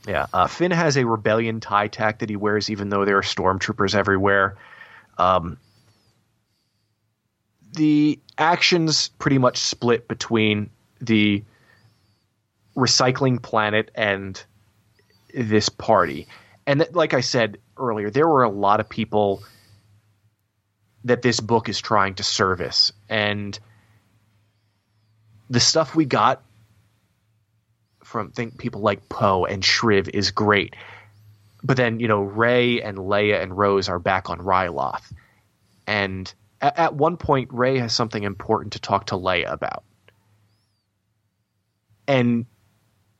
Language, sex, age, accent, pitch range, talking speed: English, male, 30-49, American, 105-120 Hz, 125 wpm